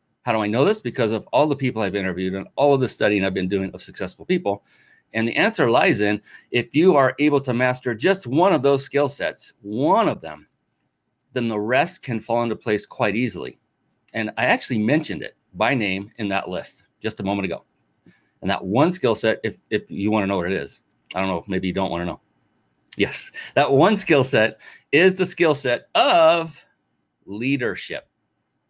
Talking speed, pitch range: 205 wpm, 100-130 Hz